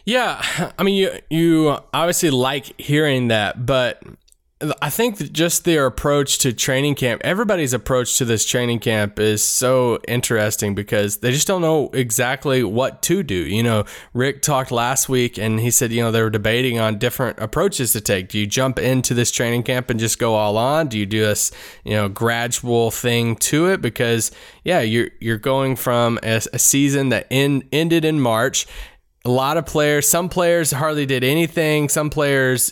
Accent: American